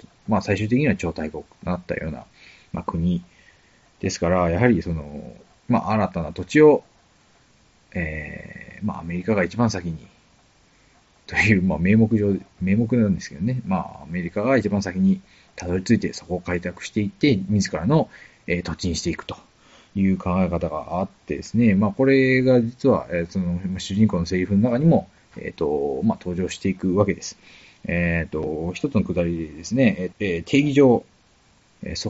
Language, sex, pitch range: Japanese, male, 85-115 Hz